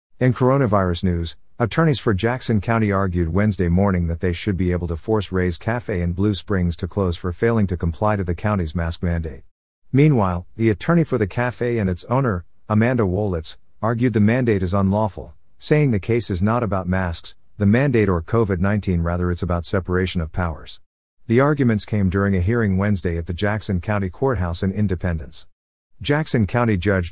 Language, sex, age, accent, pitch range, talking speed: English, male, 50-69, American, 90-110 Hz, 185 wpm